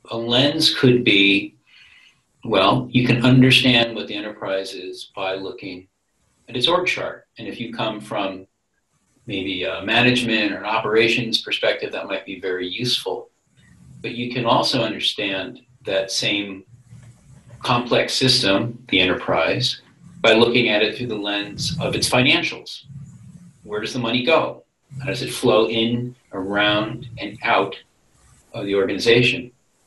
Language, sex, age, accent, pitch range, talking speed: English, male, 40-59, American, 105-125 Hz, 145 wpm